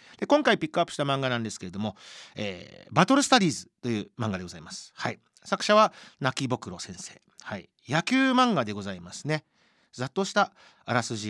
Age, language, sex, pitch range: 40-59, Japanese, male, 105-175 Hz